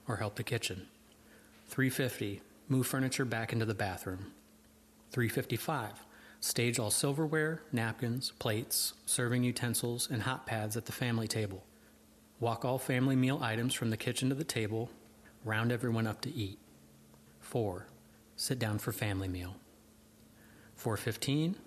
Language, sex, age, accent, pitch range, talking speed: English, male, 30-49, American, 105-130 Hz, 135 wpm